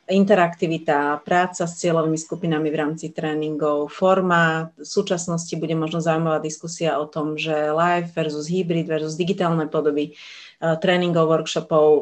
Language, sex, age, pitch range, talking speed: Slovak, female, 30-49, 155-185 Hz, 135 wpm